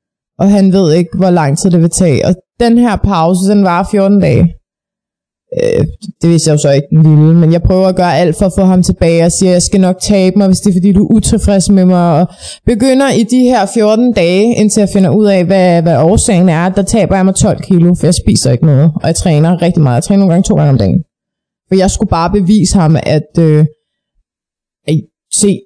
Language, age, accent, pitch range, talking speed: Danish, 20-39, native, 160-200 Hz, 240 wpm